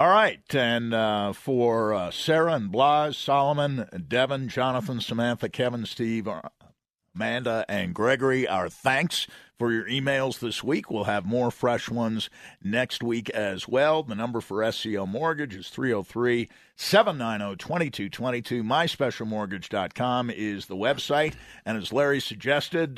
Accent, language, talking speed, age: American, English, 130 wpm, 50-69